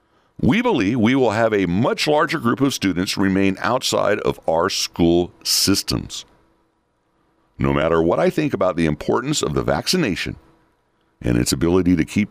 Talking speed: 160 wpm